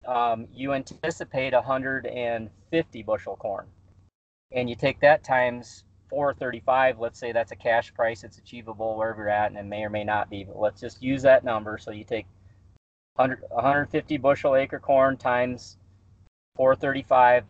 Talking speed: 155 wpm